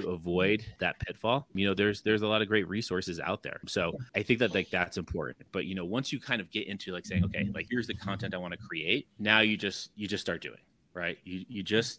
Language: English